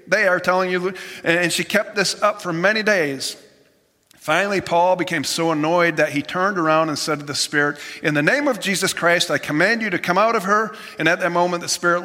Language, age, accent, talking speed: English, 40-59, American, 230 wpm